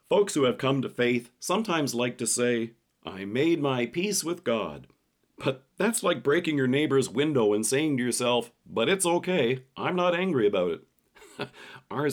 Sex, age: male, 40-59